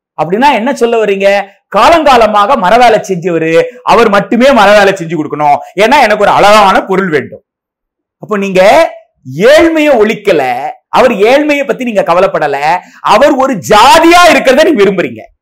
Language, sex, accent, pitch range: Tamil, male, native, 200-295 Hz